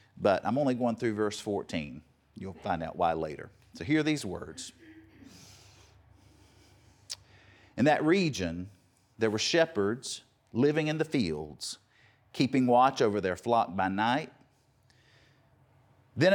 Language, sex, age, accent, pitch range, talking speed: English, male, 40-59, American, 105-145 Hz, 125 wpm